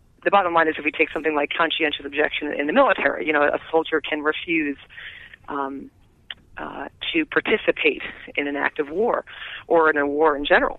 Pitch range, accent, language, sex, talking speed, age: 150-230 Hz, American, English, female, 195 wpm, 40-59